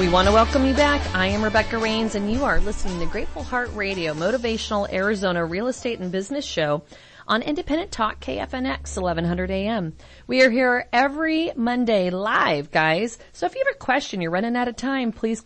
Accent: American